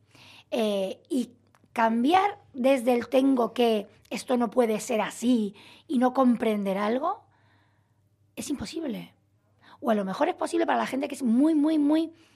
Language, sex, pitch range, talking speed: Spanish, female, 200-290 Hz, 155 wpm